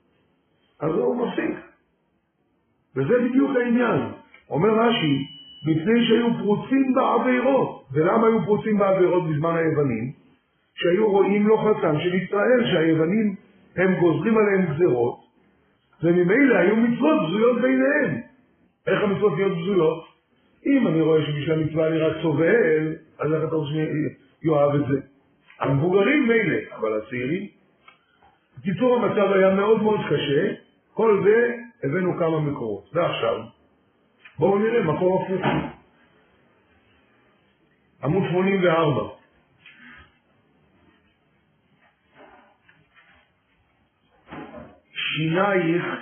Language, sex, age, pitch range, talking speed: Hebrew, male, 50-69, 155-210 Hz, 100 wpm